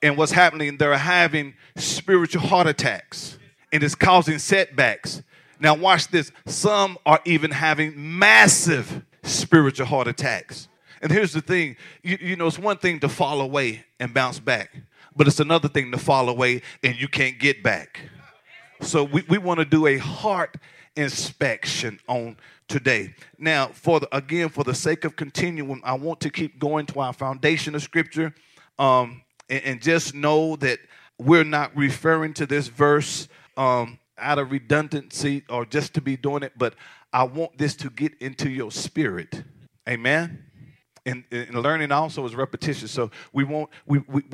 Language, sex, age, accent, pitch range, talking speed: English, male, 40-59, American, 135-160 Hz, 165 wpm